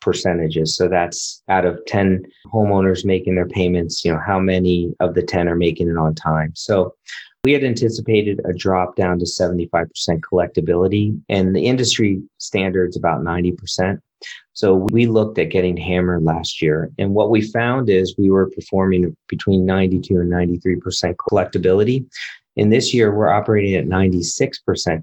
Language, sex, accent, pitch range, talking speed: English, male, American, 90-105 Hz, 155 wpm